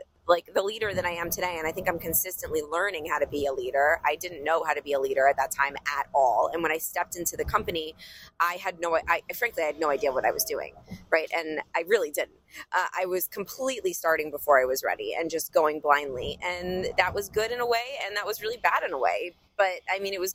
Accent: American